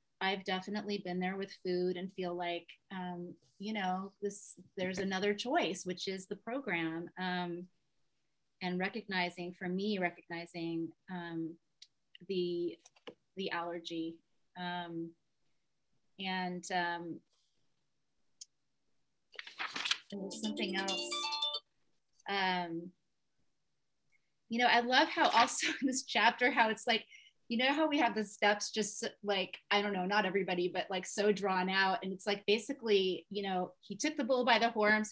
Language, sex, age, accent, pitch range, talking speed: English, female, 30-49, American, 180-215 Hz, 140 wpm